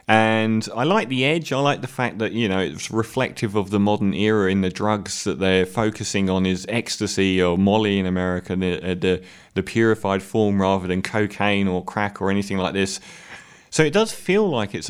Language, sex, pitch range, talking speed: English, male, 95-115 Hz, 205 wpm